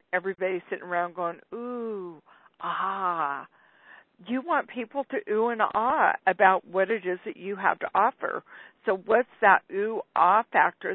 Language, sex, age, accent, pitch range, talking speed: English, female, 50-69, American, 185-240 Hz, 155 wpm